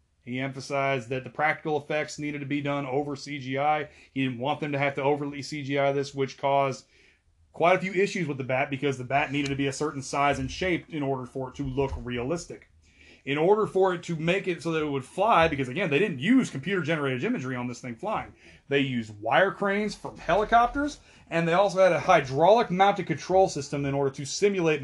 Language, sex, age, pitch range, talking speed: English, male, 30-49, 130-175 Hz, 220 wpm